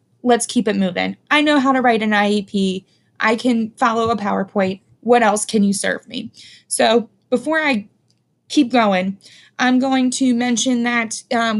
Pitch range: 210-250 Hz